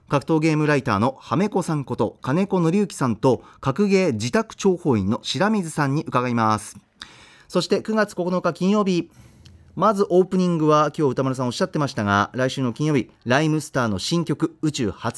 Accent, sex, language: native, male, Japanese